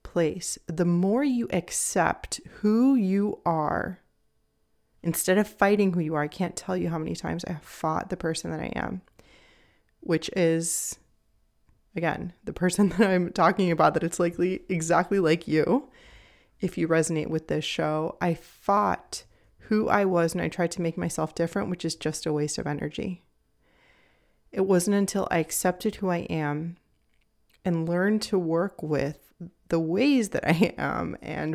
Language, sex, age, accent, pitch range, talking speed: English, female, 30-49, American, 160-190 Hz, 165 wpm